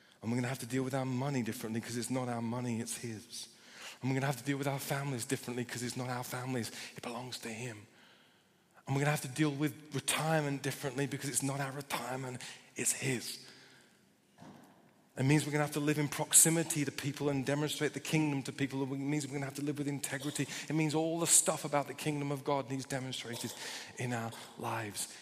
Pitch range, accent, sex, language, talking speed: 125-150 Hz, British, male, English, 235 wpm